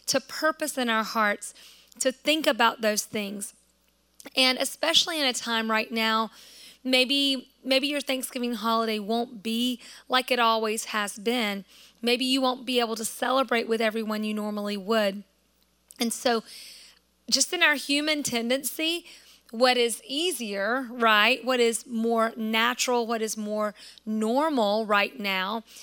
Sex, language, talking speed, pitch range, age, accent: female, English, 145 wpm, 225-265 Hz, 30-49, American